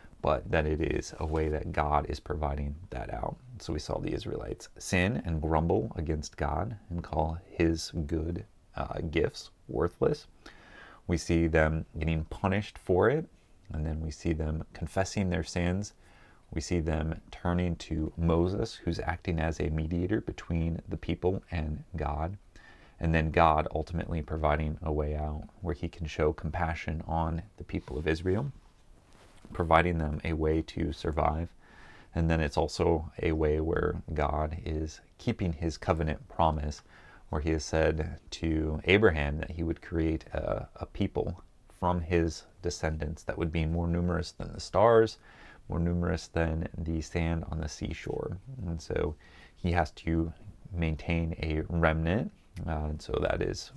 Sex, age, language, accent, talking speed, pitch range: male, 30-49, English, American, 160 wpm, 80-90 Hz